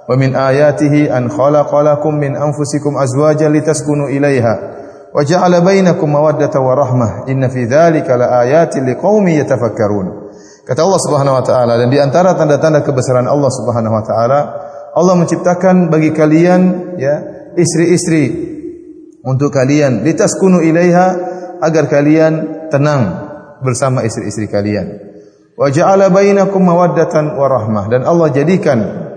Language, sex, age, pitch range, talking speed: Indonesian, male, 30-49, 125-170 Hz, 65 wpm